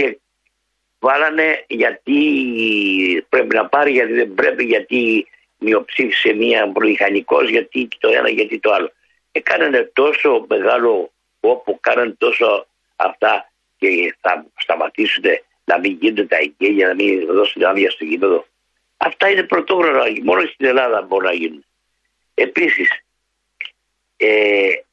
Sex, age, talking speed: male, 60-79, 120 wpm